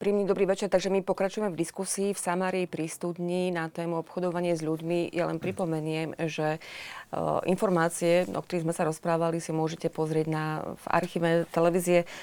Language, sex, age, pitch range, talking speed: Slovak, female, 30-49, 155-175 Hz, 160 wpm